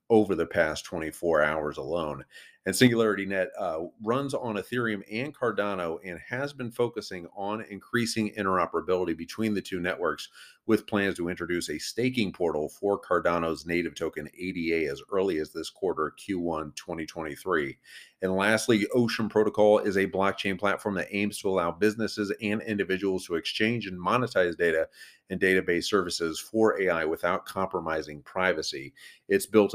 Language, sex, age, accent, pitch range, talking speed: English, male, 40-59, American, 85-105 Hz, 145 wpm